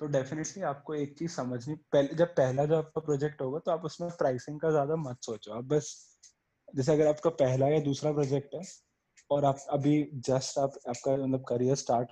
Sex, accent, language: male, native, Hindi